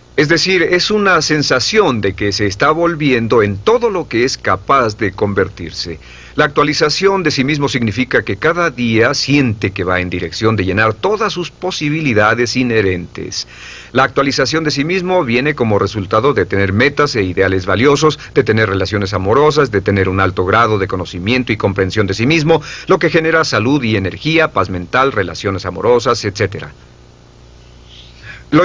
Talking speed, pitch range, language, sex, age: 170 wpm, 100-150 Hz, Spanish, male, 40-59